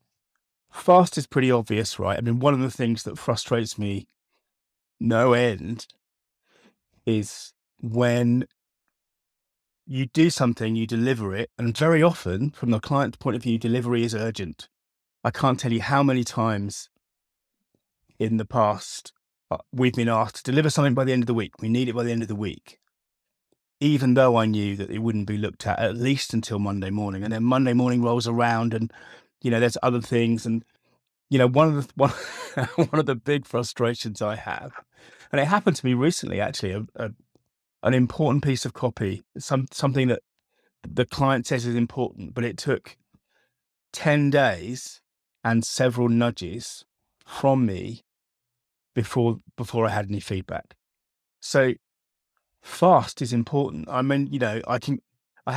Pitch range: 110-130 Hz